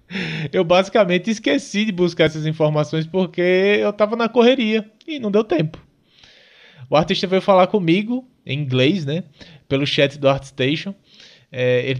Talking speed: 145 wpm